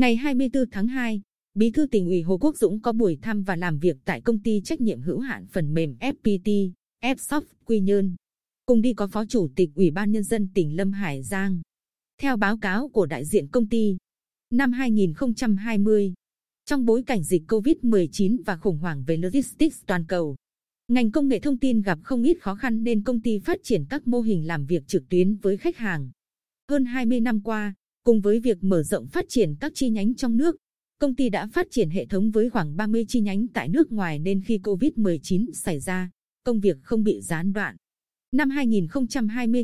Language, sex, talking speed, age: Vietnamese, female, 205 wpm, 20-39